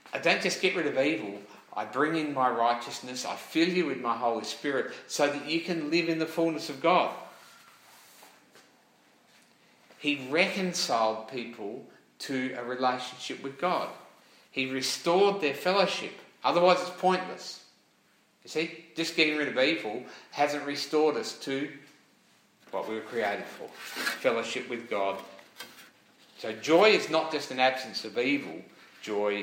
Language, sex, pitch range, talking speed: English, male, 120-175 Hz, 150 wpm